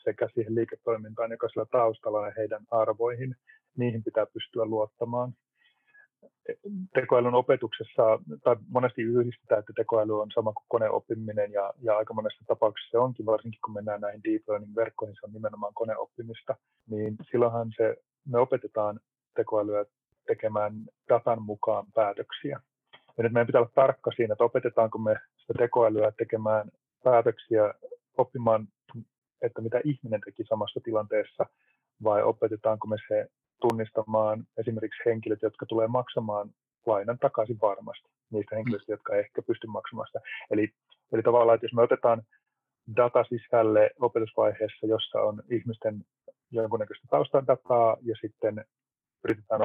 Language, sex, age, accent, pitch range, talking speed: Finnish, male, 30-49, native, 105-125 Hz, 135 wpm